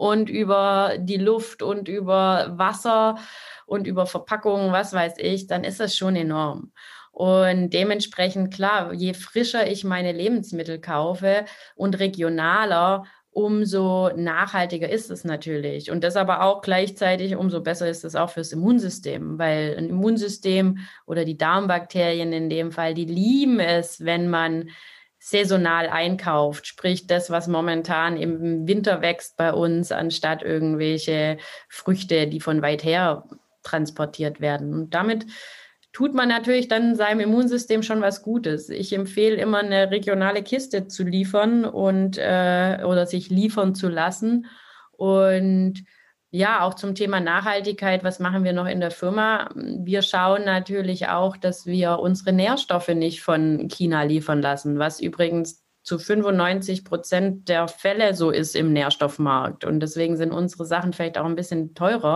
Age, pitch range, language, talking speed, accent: 20-39, 165-200 Hz, German, 150 wpm, German